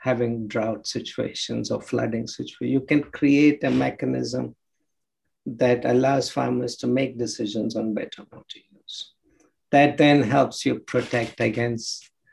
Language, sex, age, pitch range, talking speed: English, male, 60-79, 120-150 Hz, 130 wpm